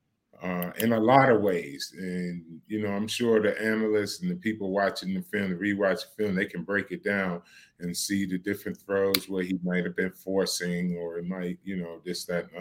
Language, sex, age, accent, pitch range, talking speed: English, male, 30-49, American, 95-120 Hz, 220 wpm